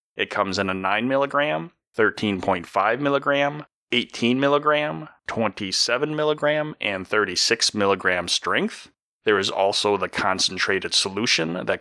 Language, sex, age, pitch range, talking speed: English, male, 30-49, 95-130 Hz, 90 wpm